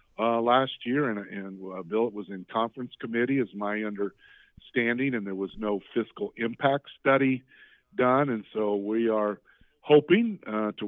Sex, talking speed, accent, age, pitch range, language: male, 165 wpm, American, 50-69, 100-115 Hz, English